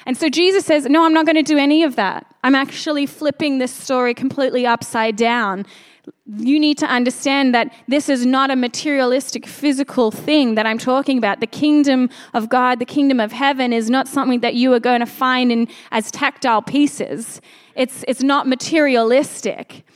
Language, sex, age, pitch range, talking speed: English, female, 20-39, 235-285 Hz, 185 wpm